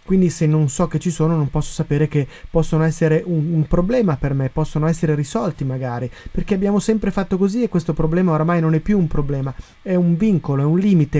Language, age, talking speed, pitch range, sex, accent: Italian, 30-49, 225 wpm, 145-180 Hz, male, native